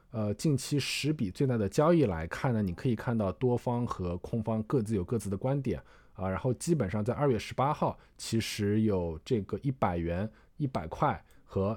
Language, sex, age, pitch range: Chinese, male, 20-39, 95-125 Hz